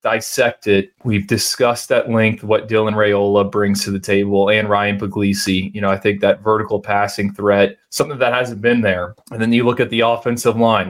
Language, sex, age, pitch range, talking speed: English, male, 20-39, 100-115 Hz, 205 wpm